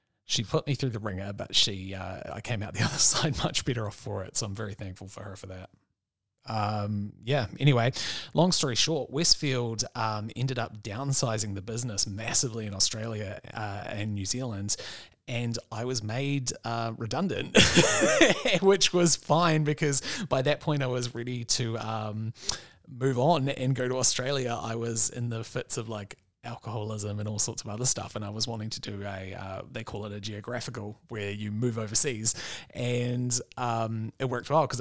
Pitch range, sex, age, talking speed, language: 110-130 Hz, male, 30-49, 190 wpm, English